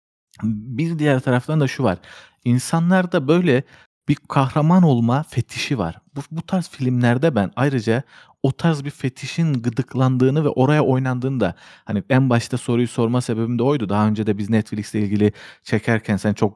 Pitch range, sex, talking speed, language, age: 105-140 Hz, male, 165 wpm, Turkish, 40-59